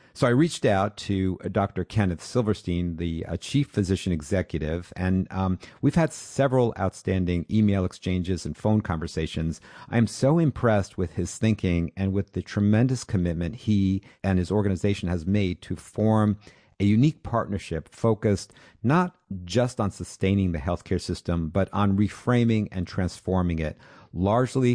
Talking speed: 150 wpm